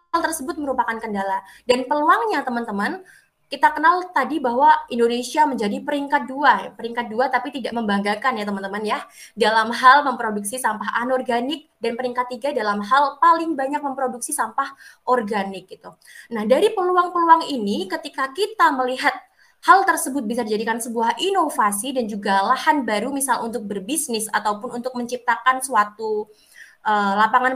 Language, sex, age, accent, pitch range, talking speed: Indonesian, female, 20-39, native, 225-290 Hz, 140 wpm